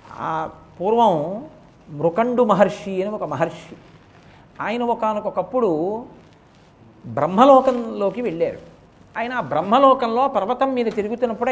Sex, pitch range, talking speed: male, 175-235 Hz, 85 wpm